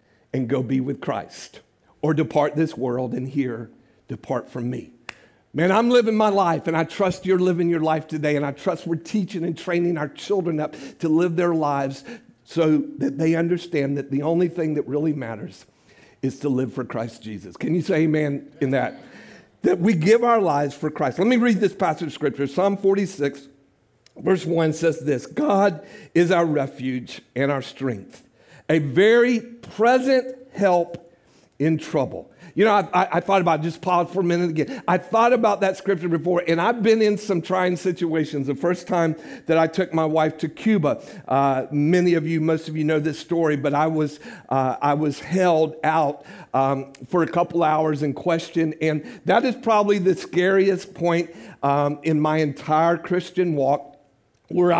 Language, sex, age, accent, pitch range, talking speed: English, male, 50-69, American, 145-185 Hz, 190 wpm